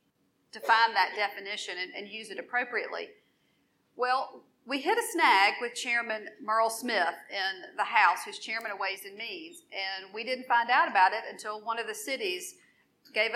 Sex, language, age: female, English, 40-59